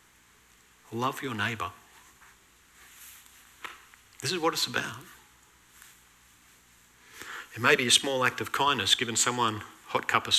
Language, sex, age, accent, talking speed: English, male, 50-69, Australian, 125 wpm